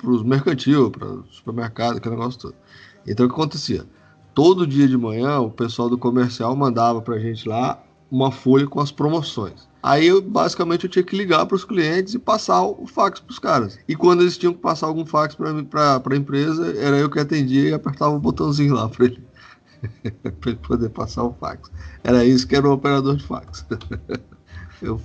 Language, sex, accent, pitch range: Portuguese, male, Brazilian, 105-135 Hz